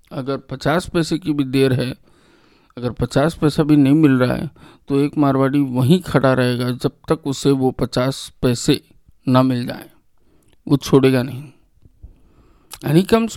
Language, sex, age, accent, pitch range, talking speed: English, male, 50-69, Indian, 135-160 Hz, 95 wpm